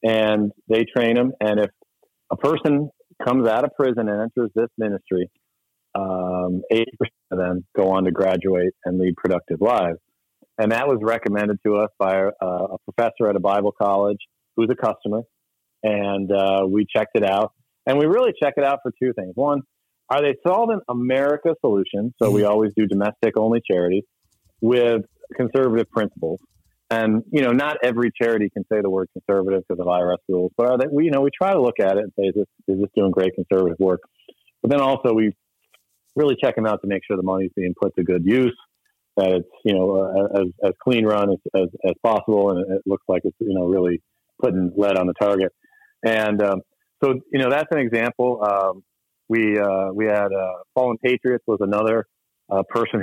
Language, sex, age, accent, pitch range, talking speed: English, male, 40-59, American, 95-115 Hz, 195 wpm